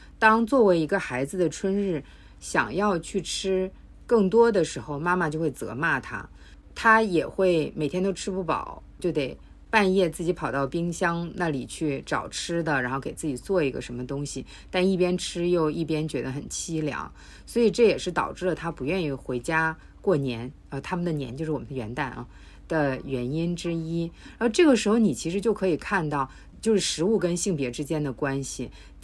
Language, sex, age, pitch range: Chinese, female, 50-69, 145-195 Hz